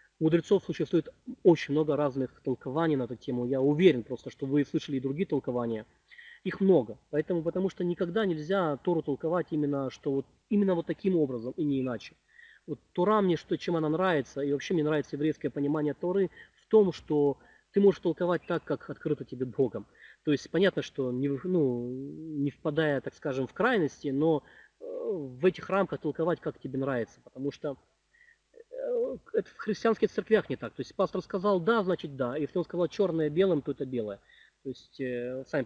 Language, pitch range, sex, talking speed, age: Russian, 125-180 Hz, male, 185 wpm, 20-39